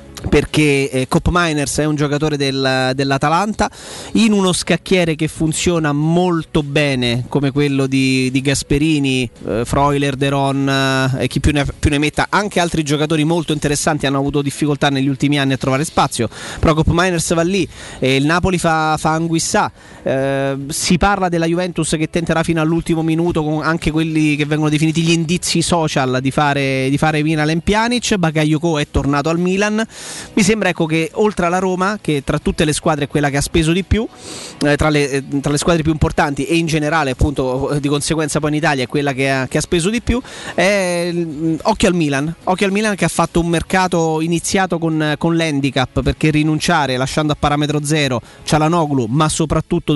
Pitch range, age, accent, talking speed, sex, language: 140-170 Hz, 30-49, native, 185 wpm, male, Italian